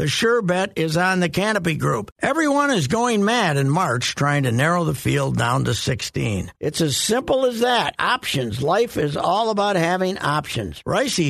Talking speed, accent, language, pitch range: 185 wpm, American, English, 160-205 Hz